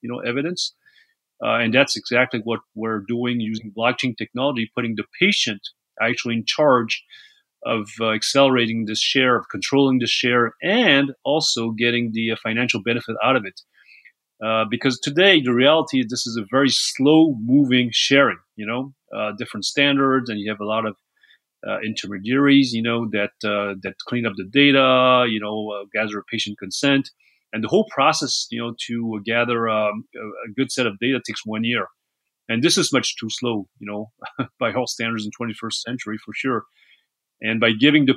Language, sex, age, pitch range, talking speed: English, male, 30-49, 110-130 Hz, 185 wpm